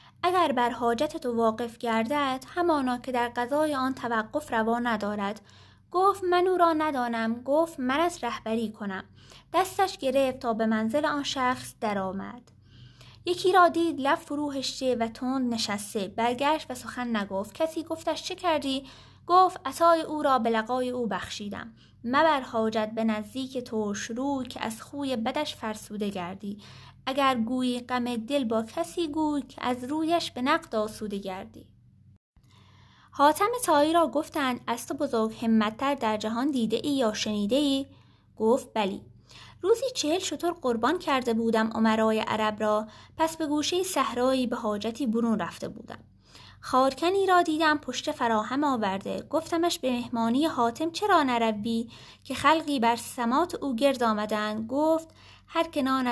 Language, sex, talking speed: Persian, female, 150 wpm